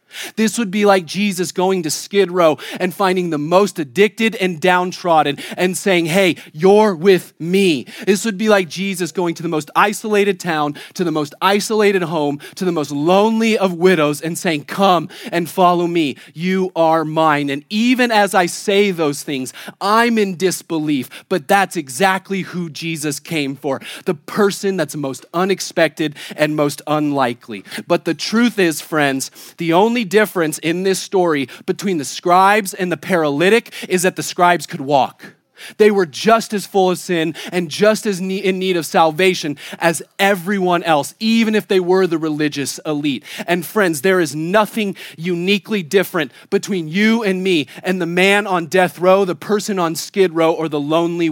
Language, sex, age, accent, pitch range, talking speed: English, male, 30-49, American, 160-195 Hz, 175 wpm